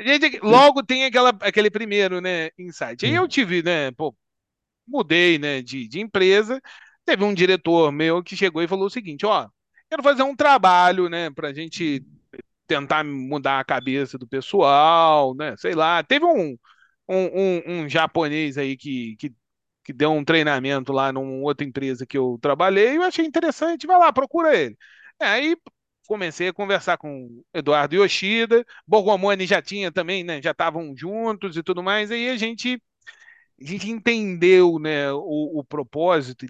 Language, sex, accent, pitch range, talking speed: Portuguese, male, Brazilian, 150-220 Hz, 170 wpm